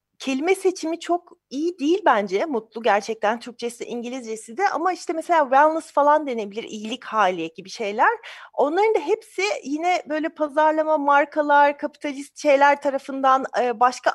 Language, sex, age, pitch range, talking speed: Turkish, female, 40-59, 225-310 Hz, 135 wpm